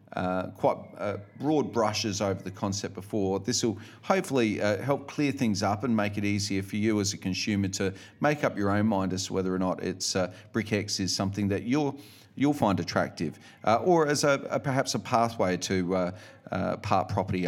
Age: 40-59